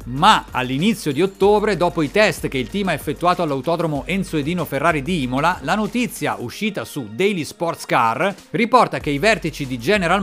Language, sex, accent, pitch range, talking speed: Italian, male, native, 140-195 Hz, 180 wpm